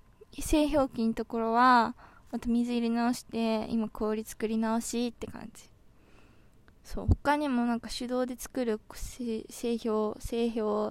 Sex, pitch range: female, 215-255 Hz